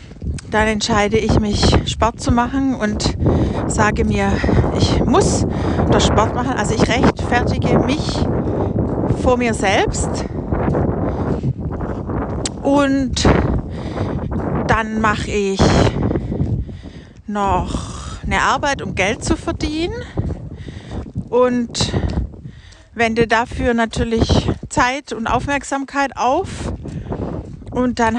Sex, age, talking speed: female, 60-79, 90 wpm